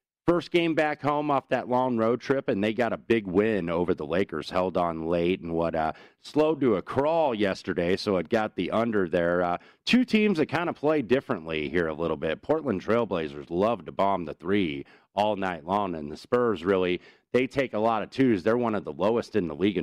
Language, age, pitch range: English, 40-59, 95-130 Hz